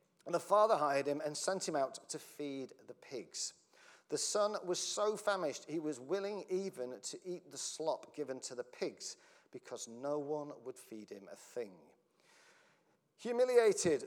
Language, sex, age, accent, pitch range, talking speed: English, male, 40-59, British, 135-190 Hz, 165 wpm